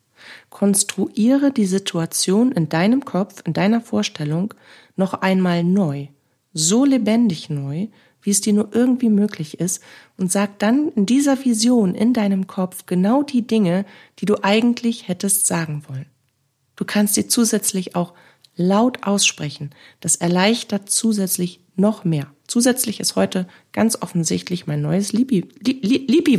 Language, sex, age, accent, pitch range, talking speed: German, female, 40-59, German, 165-225 Hz, 135 wpm